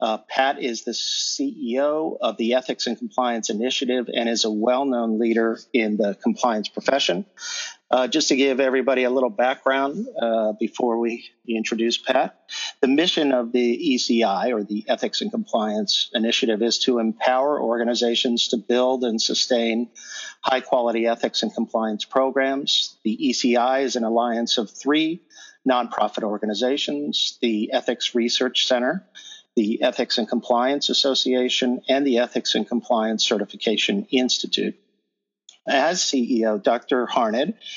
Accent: American